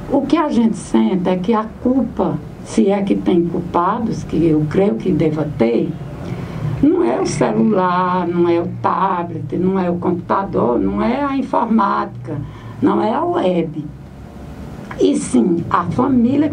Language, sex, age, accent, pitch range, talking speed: Portuguese, female, 60-79, Brazilian, 145-230 Hz, 160 wpm